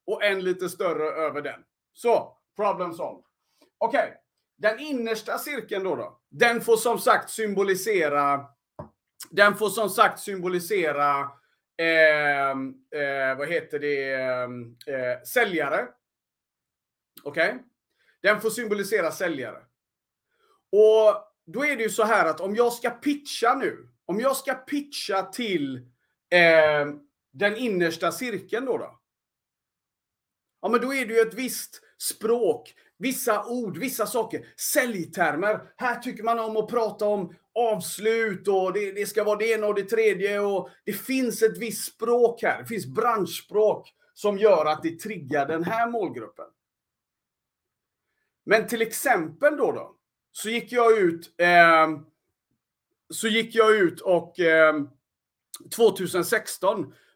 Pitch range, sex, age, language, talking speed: 165-230 Hz, male, 30-49, Swedish, 130 wpm